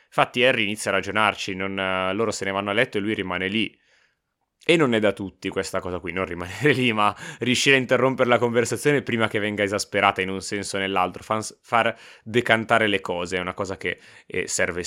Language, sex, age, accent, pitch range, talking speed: Italian, male, 20-39, native, 100-120 Hz, 210 wpm